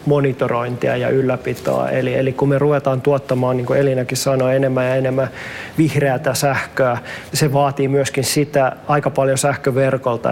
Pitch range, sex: 130-150 Hz, male